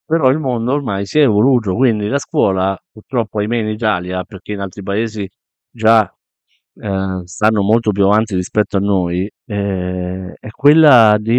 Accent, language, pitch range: native, Italian, 100-125 Hz